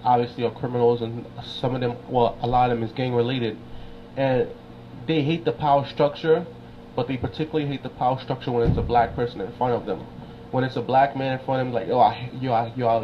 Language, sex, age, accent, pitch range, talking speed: English, male, 20-39, American, 120-140 Hz, 245 wpm